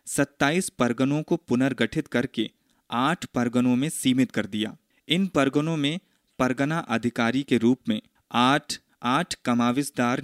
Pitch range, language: 115-155 Hz, Hindi